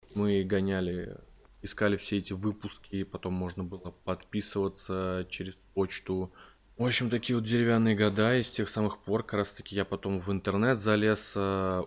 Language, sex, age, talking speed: Russian, male, 20-39, 150 wpm